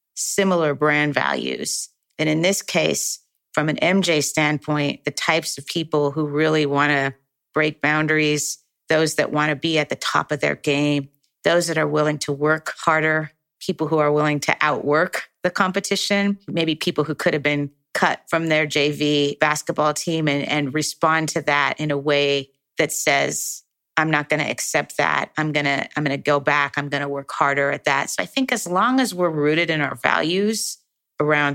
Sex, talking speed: female, 195 wpm